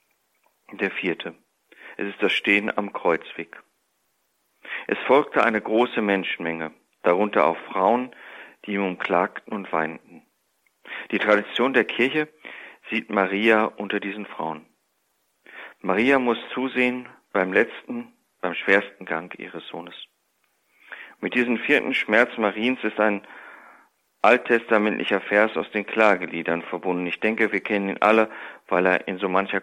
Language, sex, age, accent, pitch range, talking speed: German, male, 40-59, German, 95-115 Hz, 130 wpm